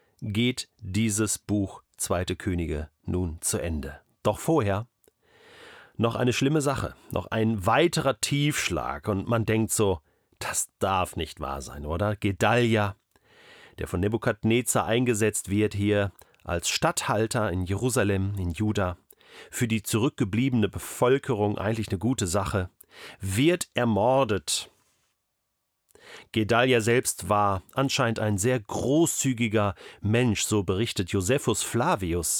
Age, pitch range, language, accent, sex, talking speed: 40-59, 95-120 Hz, German, German, male, 115 wpm